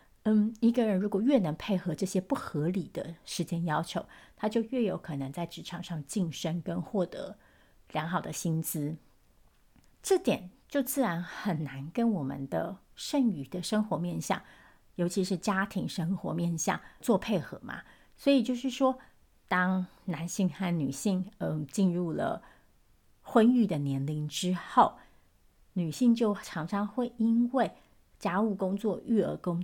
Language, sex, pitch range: Chinese, female, 175-220 Hz